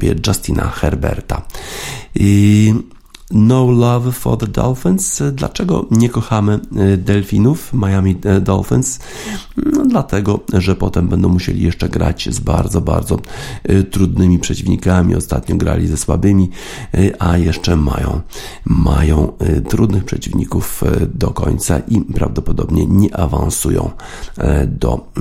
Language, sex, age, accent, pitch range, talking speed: Polish, male, 50-69, native, 85-105 Hz, 100 wpm